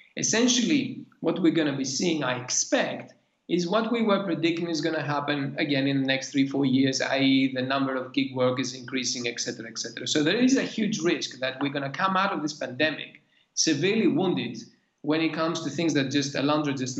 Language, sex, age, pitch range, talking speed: Greek, male, 40-59, 130-160 Hz, 220 wpm